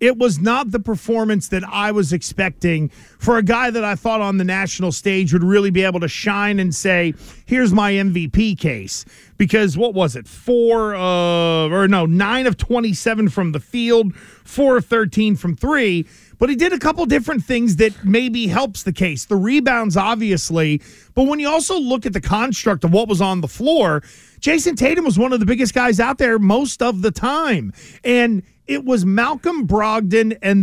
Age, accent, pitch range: 40-59, American, 185-235 Hz